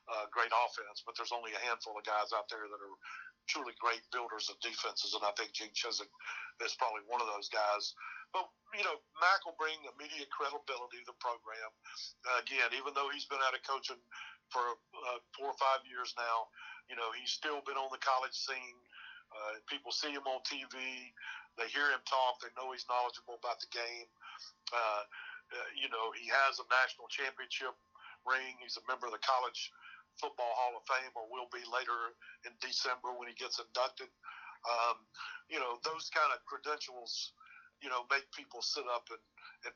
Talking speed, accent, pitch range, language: 195 wpm, American, 120-155 Hz, English